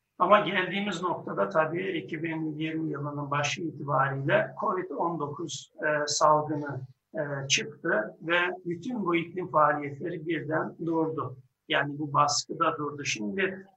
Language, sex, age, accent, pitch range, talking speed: Turkish, male, 60-79, native, 145-180 Hz, 105 wpm